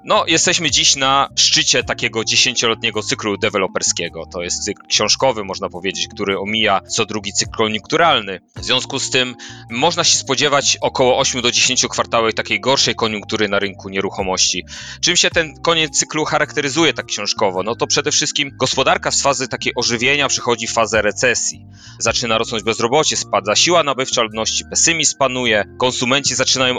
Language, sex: Polish, male